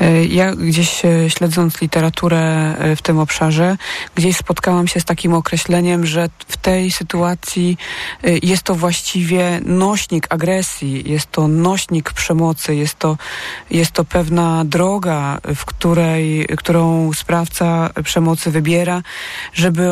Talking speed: 110 wpm